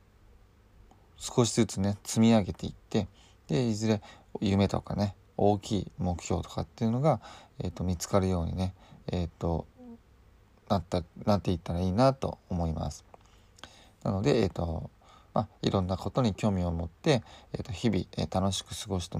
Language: Japanese